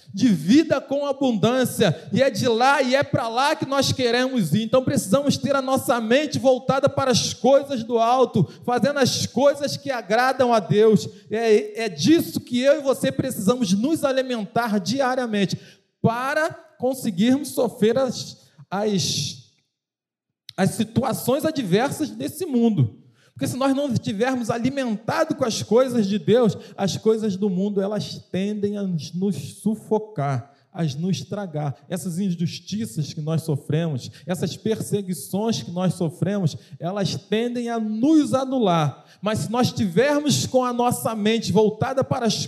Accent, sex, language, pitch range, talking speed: Brazilian, male, Portuguese, 190-255 Hz, 150 wpm